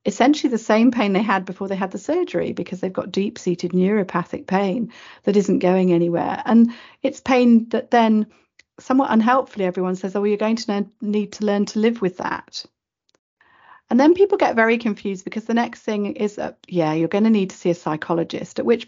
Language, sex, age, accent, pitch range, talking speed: English, female, 40-59, British, 185-240 Hz, 210 wpm